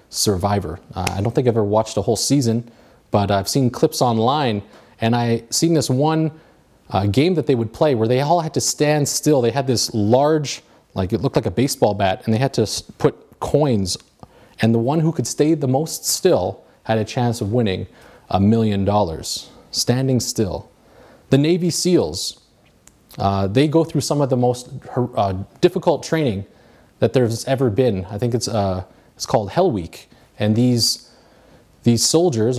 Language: English